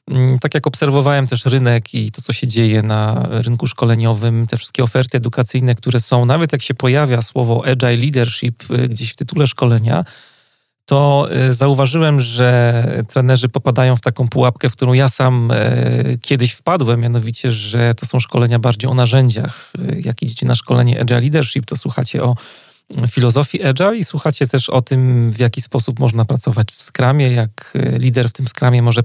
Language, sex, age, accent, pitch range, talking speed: Polish, male, 30-49, native, 120-135 Hz, 165 wpm